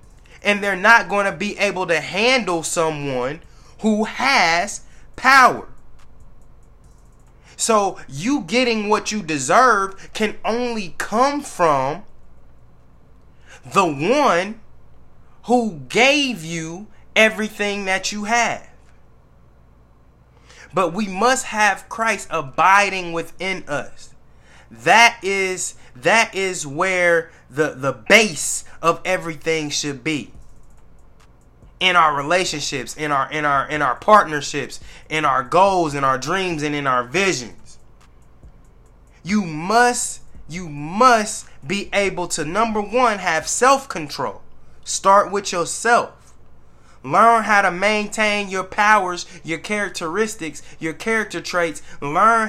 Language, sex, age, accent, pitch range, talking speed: English, male, 20-39, American, 140-210 Hz, 115 wpm